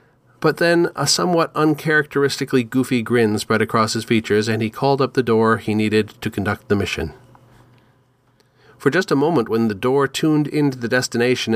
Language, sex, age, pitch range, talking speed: English, male, 40-59, 110-130 Hz, 175 wpm